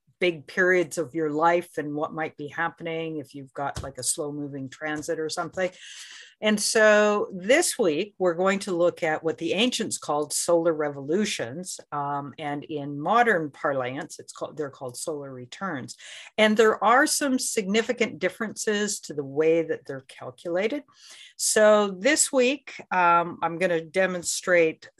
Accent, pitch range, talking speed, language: American, 150-205 Hz, 160 wpm, English